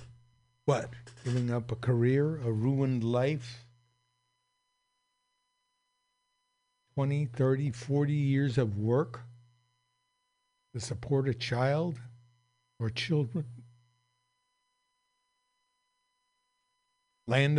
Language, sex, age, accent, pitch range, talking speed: English, male, 60-79, American, 125-170 Hz, 70 wpm